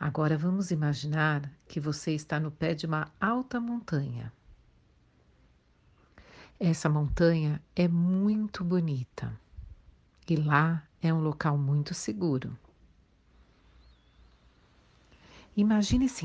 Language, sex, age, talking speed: Portuguese, female, 50-69, 90 wpm